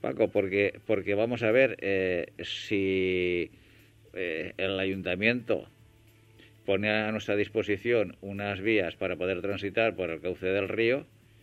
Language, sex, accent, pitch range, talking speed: Spanish, male, Spanish, 100-115 Hz, 130 wpm